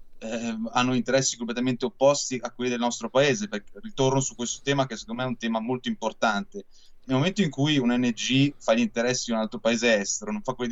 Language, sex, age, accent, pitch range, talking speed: Italian, male, 30-49, native, 110-140 Hz, 220 wpm